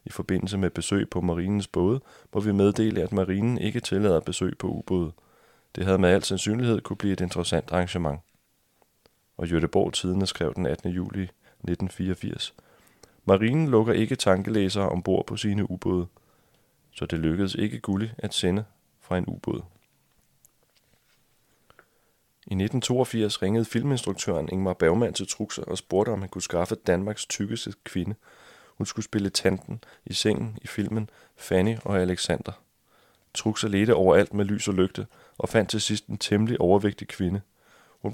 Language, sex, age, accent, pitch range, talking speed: Danish, male, 30-49, native, 90-110 Hz, 155 wpm